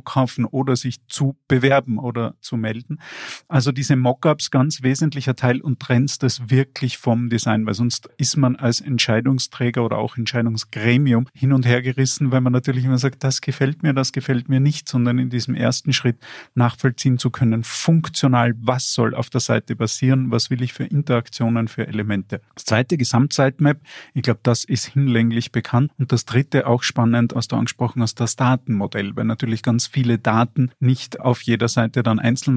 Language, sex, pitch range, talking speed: German, male, 115-130 Hz, 180 wpm